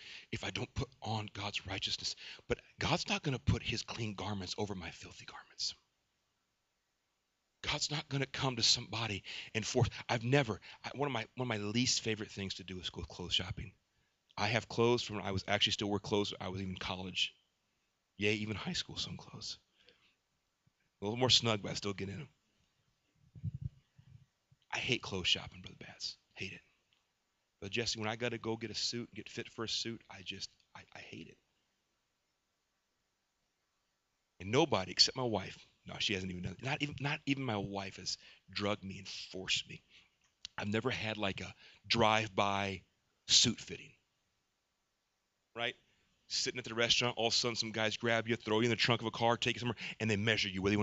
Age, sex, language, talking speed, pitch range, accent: 40-59, male, English, 200 wpm, 100-120 Hz, American